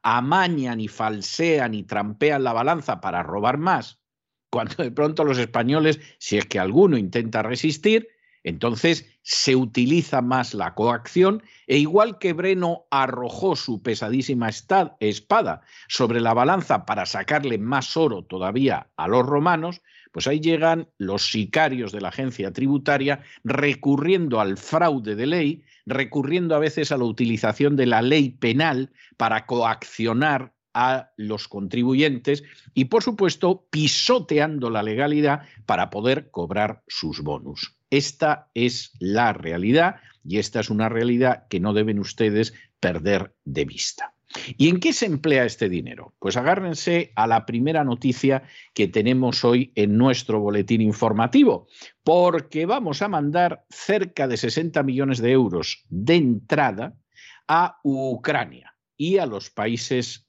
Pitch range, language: 115-150 Hz, Spanish